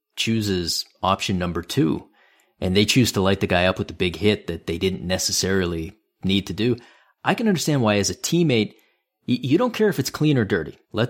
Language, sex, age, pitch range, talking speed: English, male, 30-49, 90-115 Hz, 210 wpm